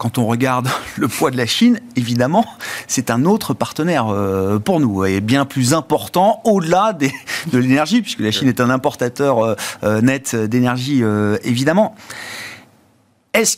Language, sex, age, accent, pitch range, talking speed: French, male, 40-59, French, 115-165 Hz, 160 wpm